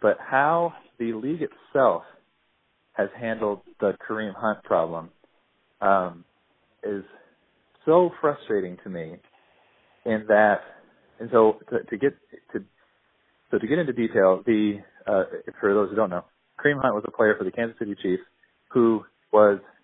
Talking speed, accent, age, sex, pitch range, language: 150 wpm, American, 40-59, male, 100-120 Hz, English